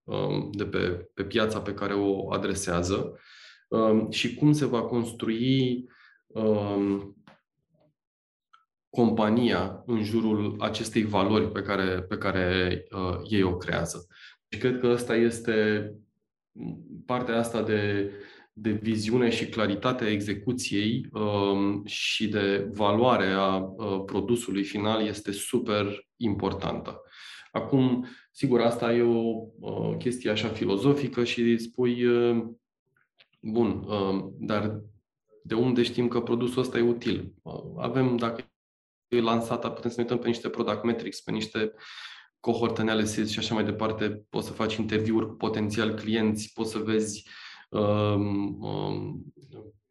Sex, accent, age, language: male, native, 20-39, Romanian